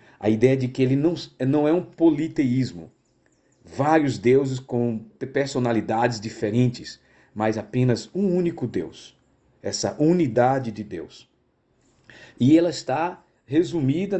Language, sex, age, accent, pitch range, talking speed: Portuguese, male, 50-69, Brazilian, 110-155 Hz, 120 wpm